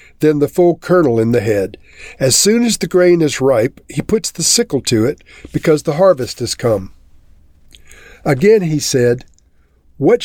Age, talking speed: 50-69, 170 wpm